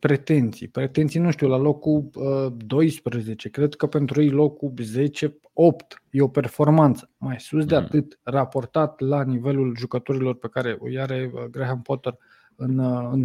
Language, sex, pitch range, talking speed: Romanian, male, 135-170 Hz, 135 wpm